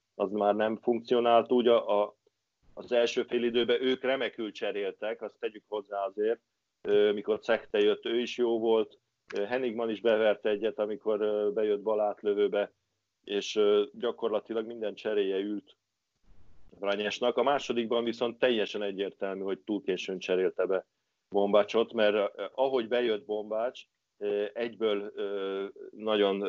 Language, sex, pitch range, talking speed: Hungarian, male, 100-120 Hz, 140 wpm